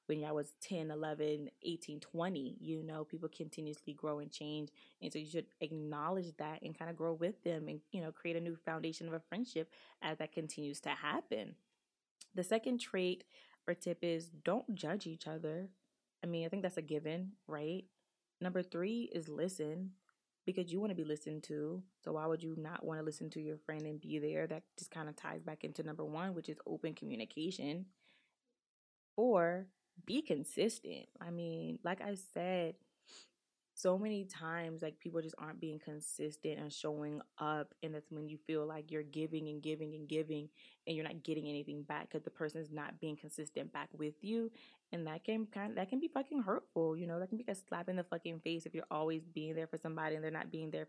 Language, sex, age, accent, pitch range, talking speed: English, female, 20-39, American, 155-180 Hz, 210 wpm